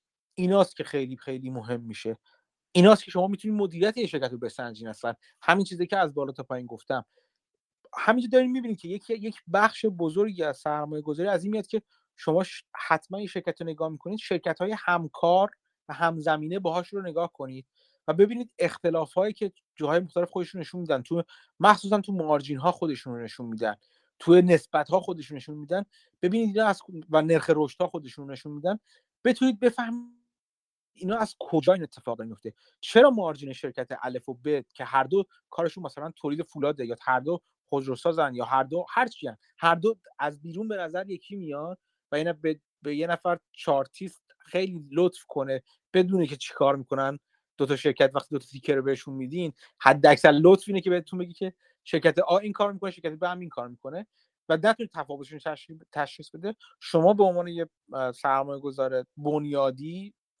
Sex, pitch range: male, 140-195 Hz